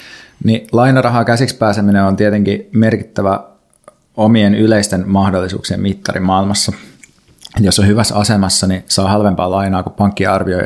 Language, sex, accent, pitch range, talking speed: Finnish, male, native, 95-105 Hz, 135 wpm